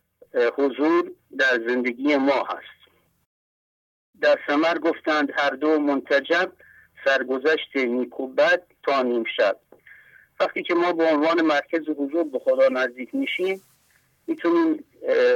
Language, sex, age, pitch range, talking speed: English, male, 50-69, 140-200 Hz, 115 wpm